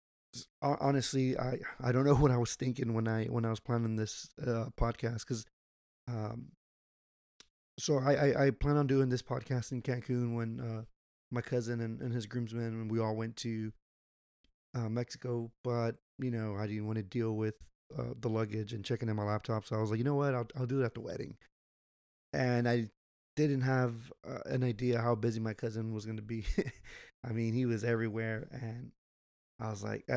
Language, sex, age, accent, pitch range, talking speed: English, male, 30-49, American, 110-125 Hz, 200 wpm